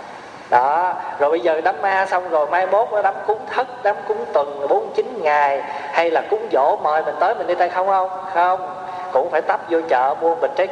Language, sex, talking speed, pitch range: Vietnamese, male, 220 wpm, 165-235 Hz